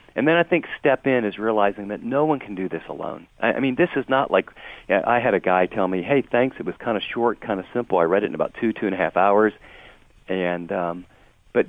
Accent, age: American, 50-69